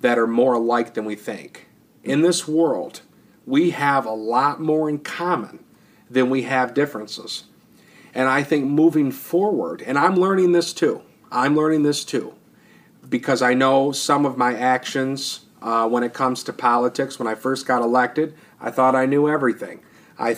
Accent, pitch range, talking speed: American, 120-150 Hz, 175 wpm